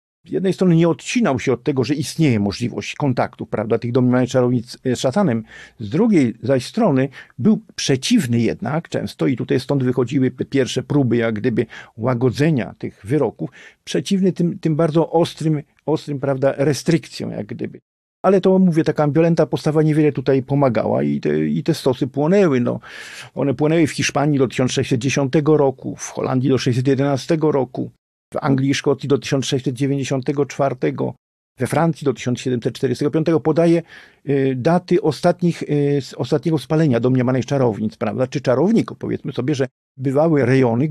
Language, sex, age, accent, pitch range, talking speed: Polish, male, 50-69, native, 130-160 Hz, 145 wpm